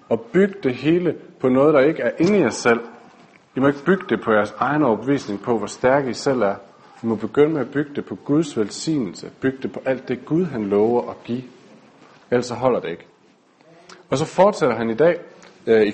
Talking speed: 225 wpm